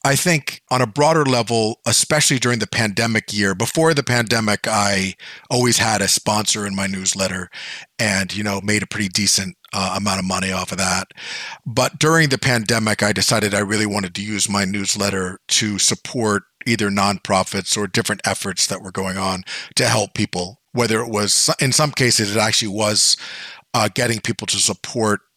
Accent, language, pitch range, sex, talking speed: American, English, 100-120 Hz, male, 180 wpm